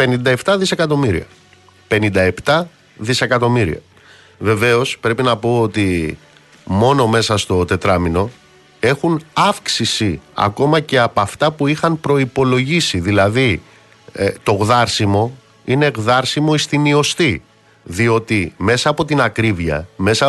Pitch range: 100-140 Hz